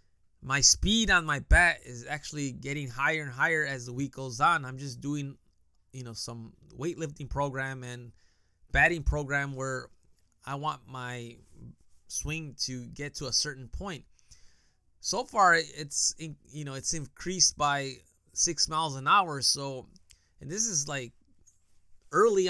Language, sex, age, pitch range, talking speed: English, male, 20-39, 130-175 Hz, 150 wpm